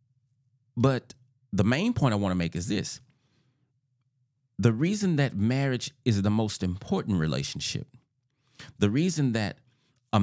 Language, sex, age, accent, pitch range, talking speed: English, male, 30-49, American, 105-135 Hz, 135 wpm